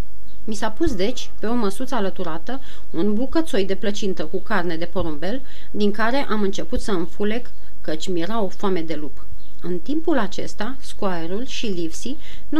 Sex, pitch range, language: female, 185-235 Hz, Romanian